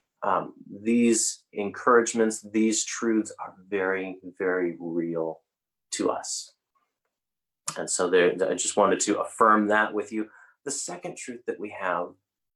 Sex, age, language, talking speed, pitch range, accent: male, 30-49, English, 130 wpm, 95-115 Hz, American